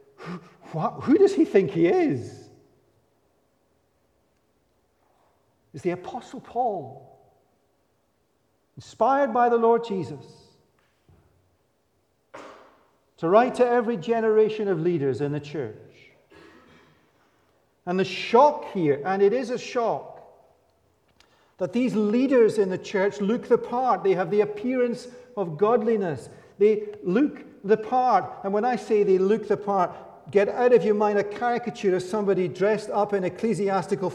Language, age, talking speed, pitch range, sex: English, 50-69, 130 wpm, 175-245 Hz, male